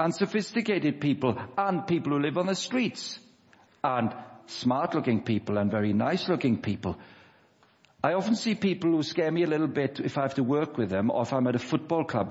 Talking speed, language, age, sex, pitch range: 195 wpm, English, 60-79, male, 115-150 Hz